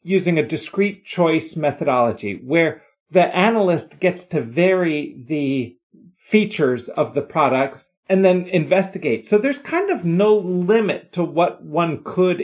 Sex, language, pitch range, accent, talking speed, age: male, English, 145-195 Hz, American, 140 wpm, 40-59